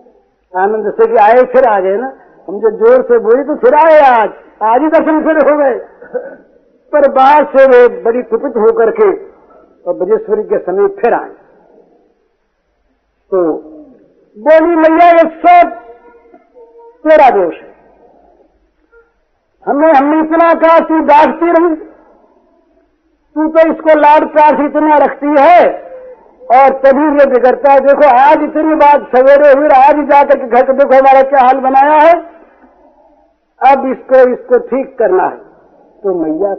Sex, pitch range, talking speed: female, 220-325 Hz, 140 wpm